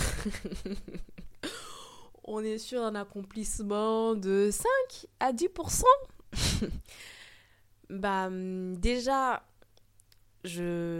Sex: female